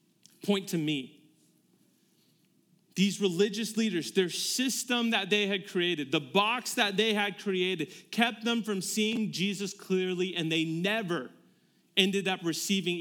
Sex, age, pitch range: male, 30-49, 150-195 Hz